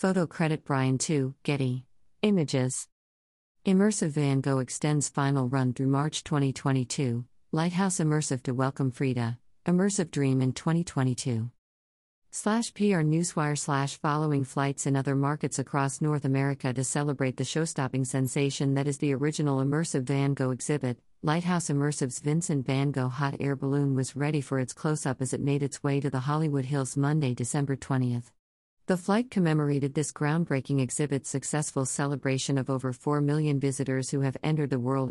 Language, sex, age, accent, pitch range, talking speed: English, female, 50-69, American, 130-150 Hz, 160 wpm